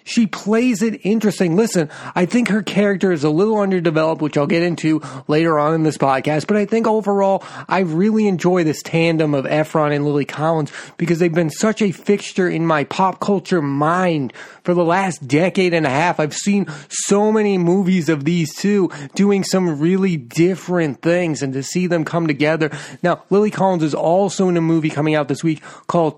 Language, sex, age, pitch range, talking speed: English, male, 30-49, 145-185 Hz, 195 wpm